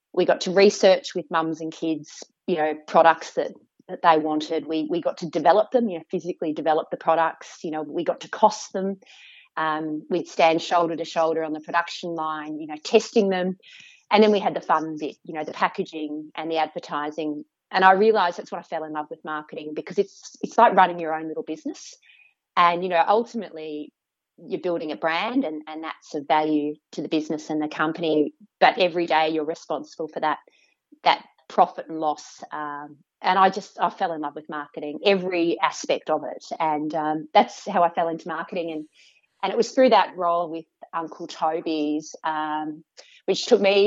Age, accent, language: 30-49, Australian, English